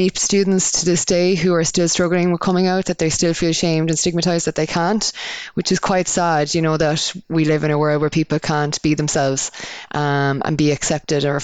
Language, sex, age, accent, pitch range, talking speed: English, female, 20-39, Irish, 155-175 Hz, 225 wpm